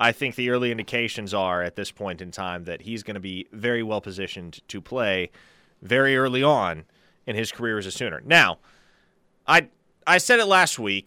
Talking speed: 200 wpm